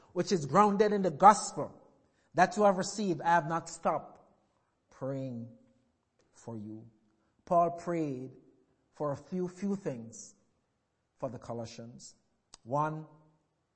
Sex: male